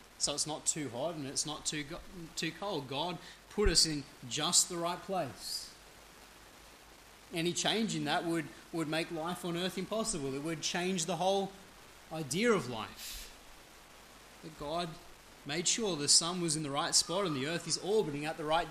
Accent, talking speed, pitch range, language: Australian, 185 wpm, 150-190 Hz, English